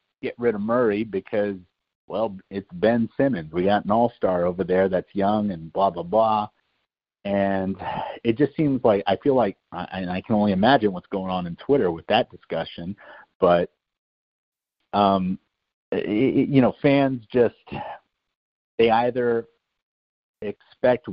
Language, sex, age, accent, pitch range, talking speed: English, male, 50-69, American, 95-120 Hz, 150 wpm